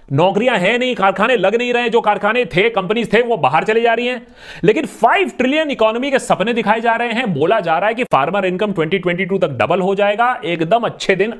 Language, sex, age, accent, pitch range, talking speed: Hindi, male, 30-49, native, 150-235 Hz, 225 wpm